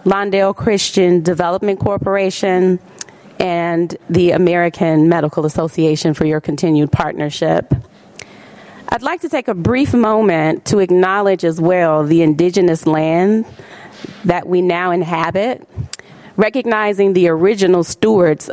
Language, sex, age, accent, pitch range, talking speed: English, female, 30-49, American, 170-210 Hz, 115 wpm